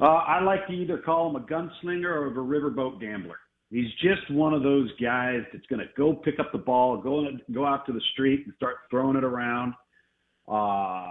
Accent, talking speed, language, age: American, 215 wpm, English, 50-69